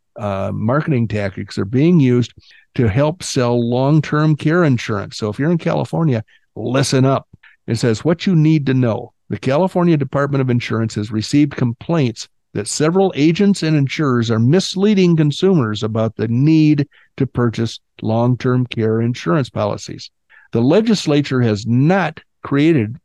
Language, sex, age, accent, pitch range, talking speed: English, male, 50-69, American, 115-150 Hz, 145 wpm